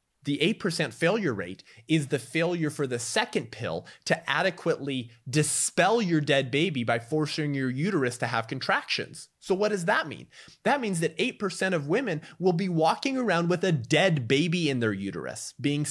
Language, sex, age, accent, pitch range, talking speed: English, male, 20-39, American, 115-165 Hz, 175 wpm